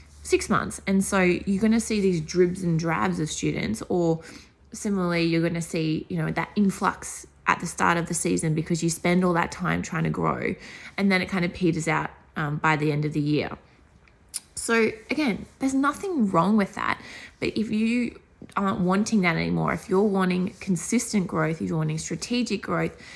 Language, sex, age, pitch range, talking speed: English, female, 20-39, 165-205 Hz, 200 wpm